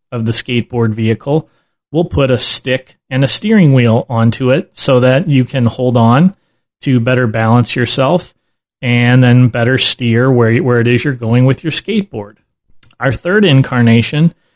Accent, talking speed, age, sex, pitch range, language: American, 165 wpm, 30-49, male, 120-150 Hz, English